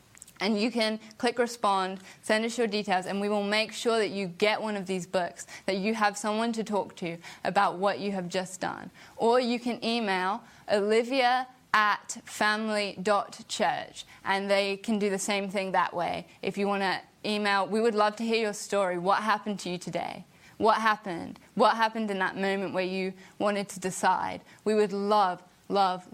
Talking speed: 195 wpm